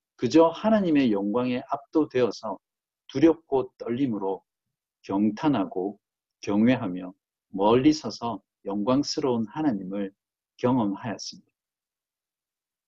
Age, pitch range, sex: 50-69, 105-165 Hz, male